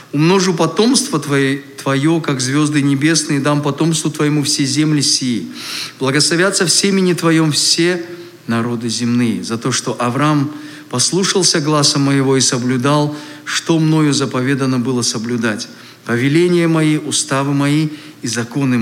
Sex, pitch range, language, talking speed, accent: male, 145-185 Hz, Russian, 130 wpm, native